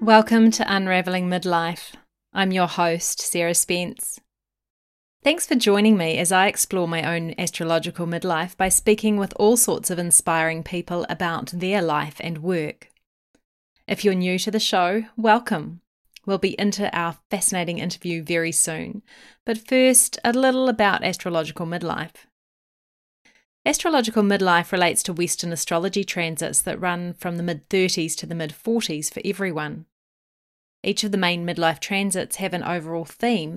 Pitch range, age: 170-205 Hz, 30-49